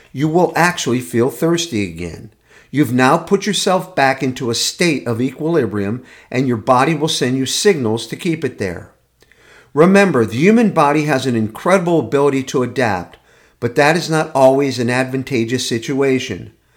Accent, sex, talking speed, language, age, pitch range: American, male, 160 wpm, English, 50-69, 115-160 Hz